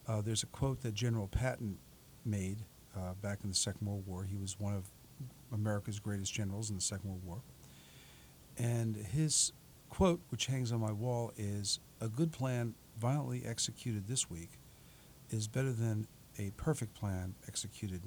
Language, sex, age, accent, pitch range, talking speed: English, male, 50-69, American, 105-130 Hz, 165 wpm